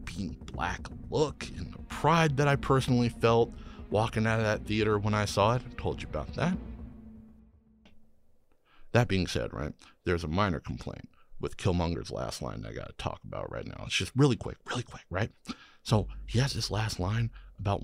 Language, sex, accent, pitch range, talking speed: English, male, American, 95-145 Hz, 190 wpm